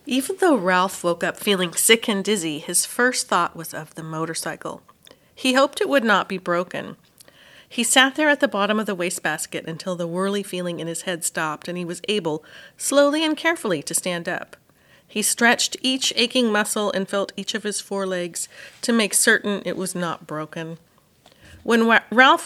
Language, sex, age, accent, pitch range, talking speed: English, female, 40-59, American, 175-240 Hz, 185 wpm